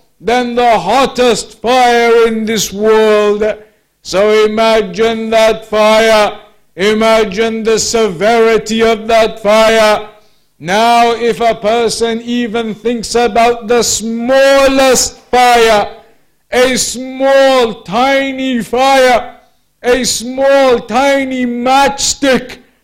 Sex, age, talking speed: male, 50-69, 90 wpm